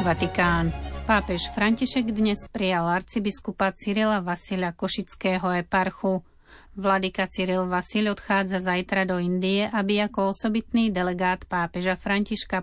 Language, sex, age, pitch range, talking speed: Slovak, female, 30-49, 180-205 Hz, 110 wpm